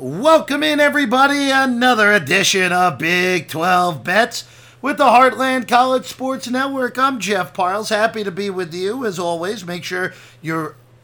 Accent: American